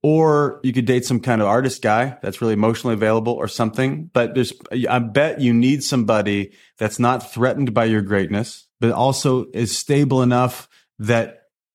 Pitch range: 105-120 Hz